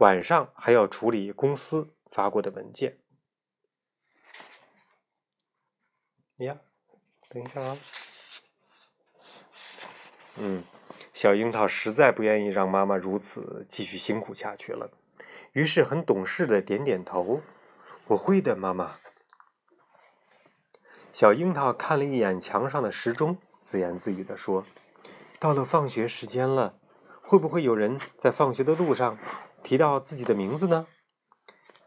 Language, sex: Chinese, male